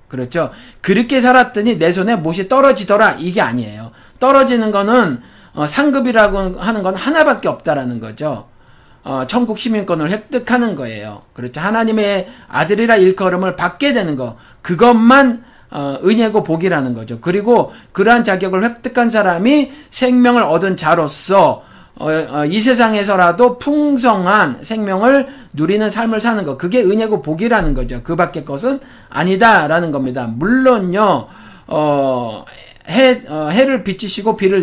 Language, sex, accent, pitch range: Korean, male, native, 165-240 Hz